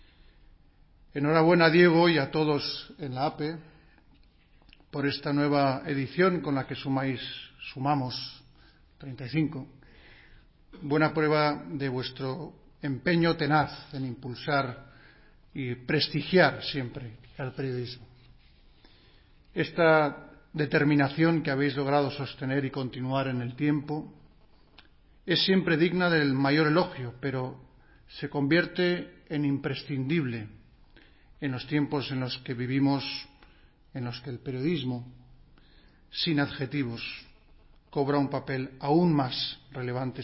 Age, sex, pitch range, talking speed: 50-69, male, 130-150 Hz, 110 wpm